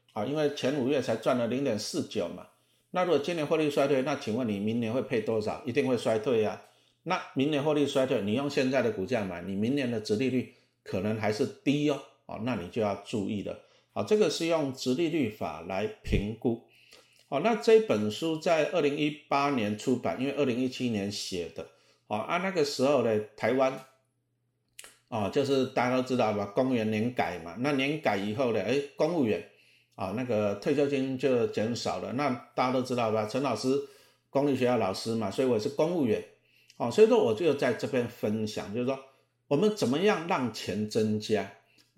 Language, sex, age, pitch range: Chinese, male, 50-69, 115-150 Hz